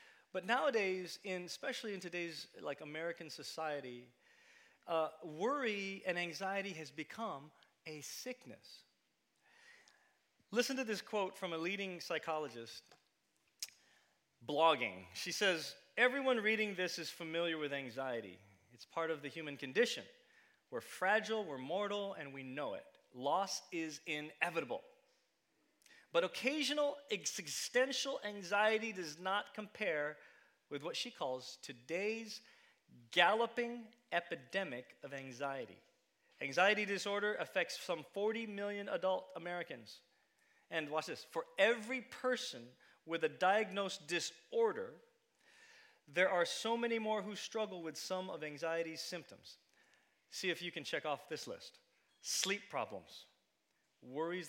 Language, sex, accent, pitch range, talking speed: English, male, American, 155-225 Hz, 120 wpm